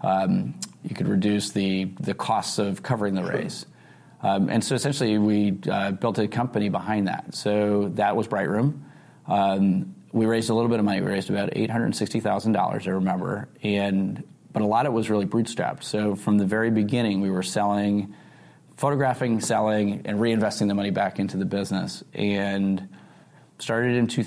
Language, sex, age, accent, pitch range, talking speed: English, male, 30-49, American, 100-115 Hz, 185 wpm